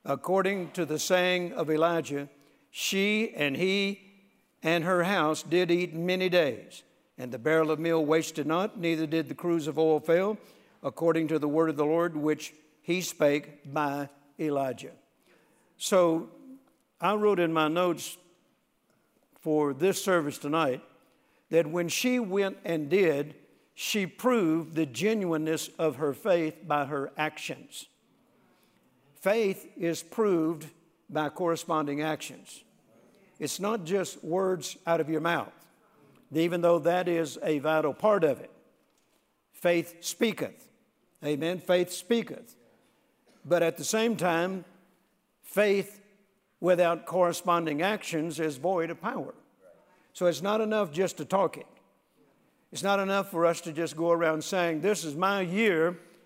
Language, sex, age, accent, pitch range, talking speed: English, male, 60-79, American, 155-190 Hz, 140 wpm